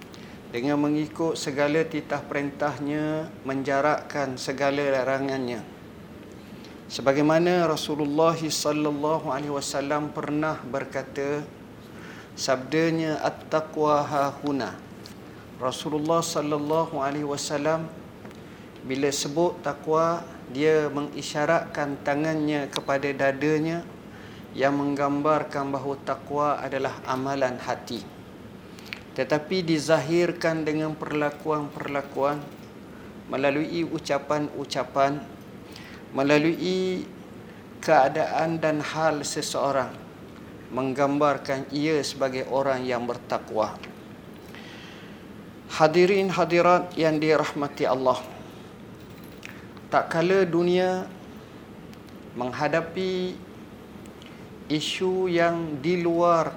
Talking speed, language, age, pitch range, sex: 70 wpm, Malay, 50-69, 140-160 Hz, male